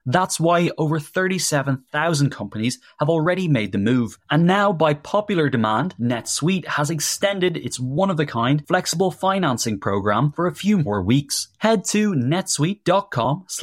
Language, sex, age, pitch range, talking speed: English, male, 20-39, 115-175 Hz, 135 wpm